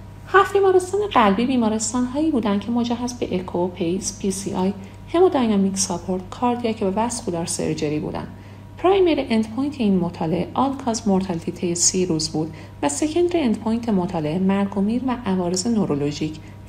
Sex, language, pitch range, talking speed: female, Persian, 175-250 Hz, 135 wpm